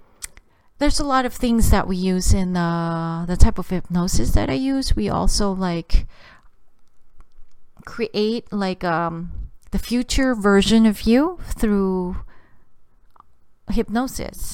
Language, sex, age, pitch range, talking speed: English, female, 30-49, 180-230 Hz, 125 wpm